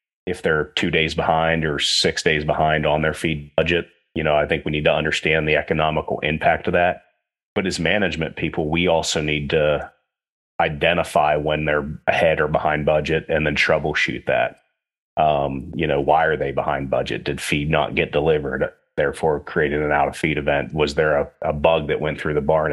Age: 30-49